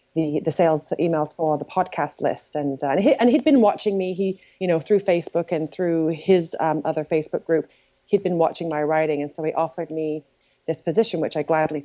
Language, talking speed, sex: English, 225 wpm, female